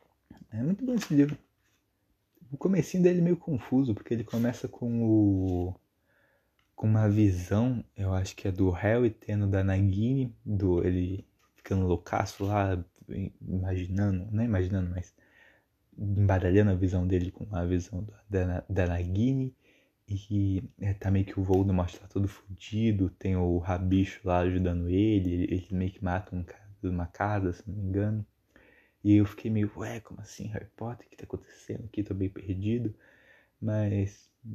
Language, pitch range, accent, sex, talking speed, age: Portuguese, 95-110 Hz, Brazilian, male, 165 wpm, 20-39